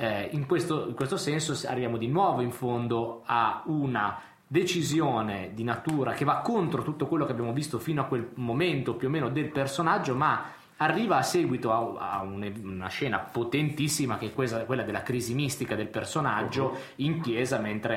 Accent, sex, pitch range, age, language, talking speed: native, male, 115-150 Hz, 20-39, Italian, 180 wpm